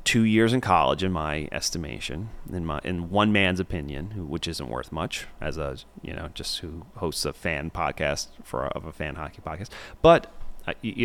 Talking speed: 195 wpm